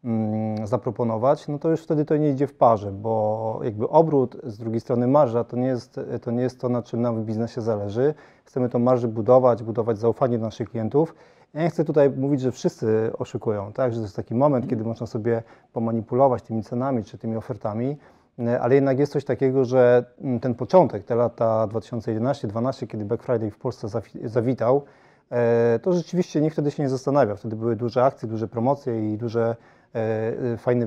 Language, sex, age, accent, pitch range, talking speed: Polish, male, 30-49, native, 115-135 Hz, 185 wpm